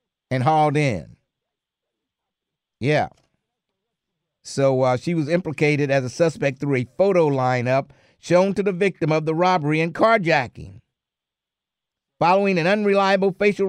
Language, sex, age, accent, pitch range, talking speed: English, male, 50-69, American, 130-175 Hz, 125 wpm